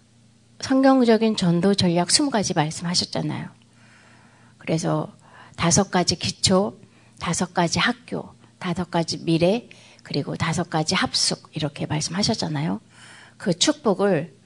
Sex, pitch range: female, 165-215 Hz